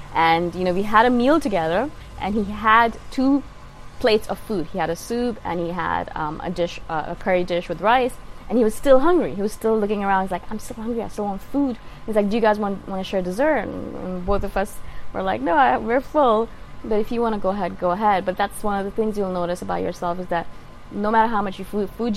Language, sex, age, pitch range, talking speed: English, female, 20-39, 175-220 Hz, 260 wpm